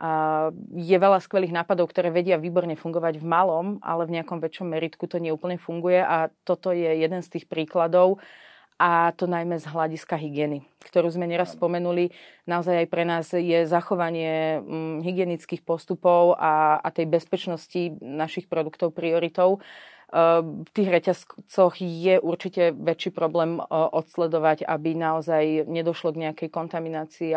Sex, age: female, 30-49